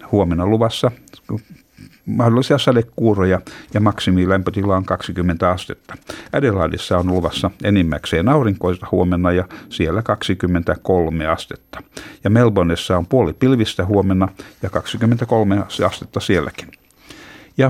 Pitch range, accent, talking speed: 90-110 Hz, native, 100 wpm